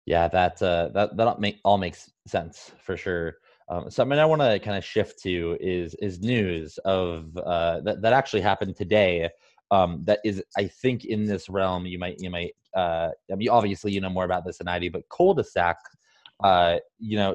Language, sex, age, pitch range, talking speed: English, male, 20-39, 95-125 Hz, 220 wpm